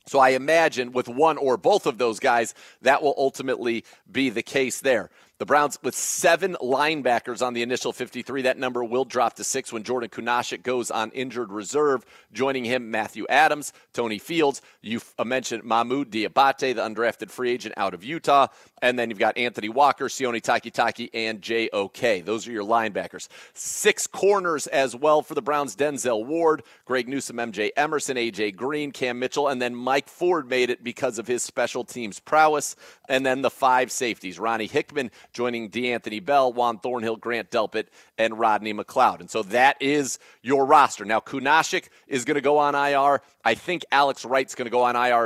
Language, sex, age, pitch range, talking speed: English, male, 40-59, 120-145 Hz, 185 wpm